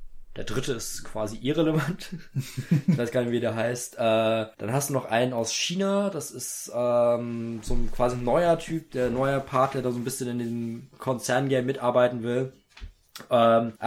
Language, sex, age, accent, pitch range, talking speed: German, male, 20-39, German, 115-135 Hz, 180 wpm